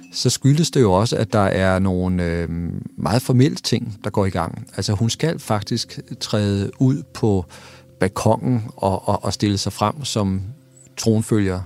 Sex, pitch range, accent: male, 95-110 Hz, Danish